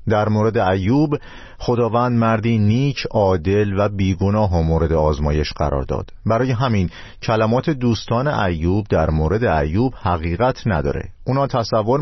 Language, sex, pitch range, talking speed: Persian, male, 90-125 Hz, 130 wpm